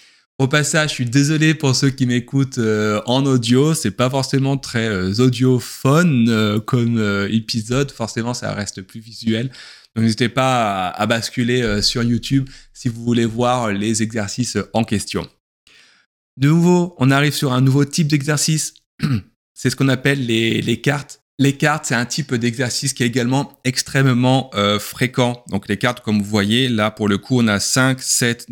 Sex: male